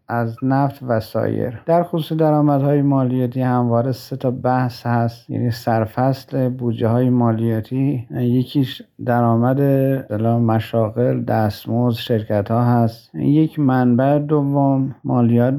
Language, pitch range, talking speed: Persian, 120-140 Hz, 110 wpm